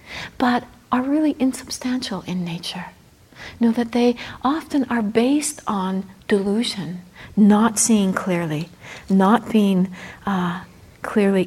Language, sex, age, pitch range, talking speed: English, female, 60-79, 190-235 Hz, 115 wpm